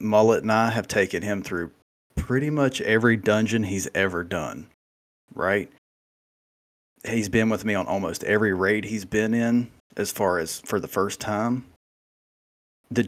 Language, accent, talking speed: English, American, 155 wpm